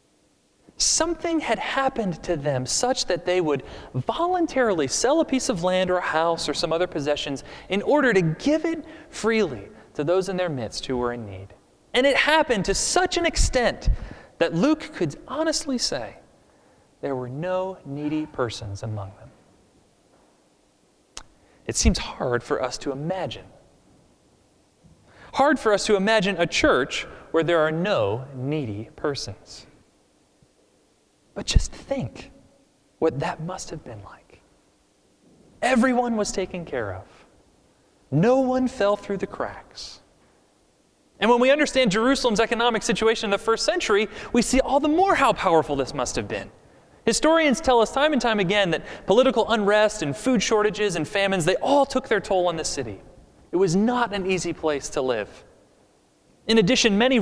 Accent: American